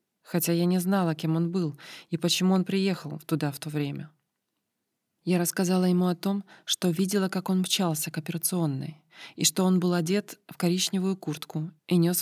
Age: 20-39